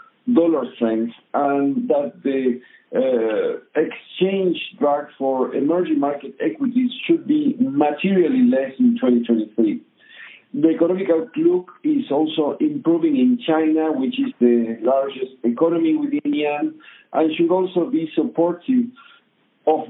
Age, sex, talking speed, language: 50-69, male, 120 wpm, English